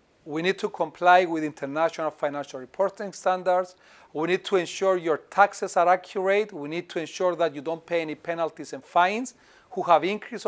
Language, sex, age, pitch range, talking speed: Greek, male, 40-59, 170-205 Hz, 185 wpm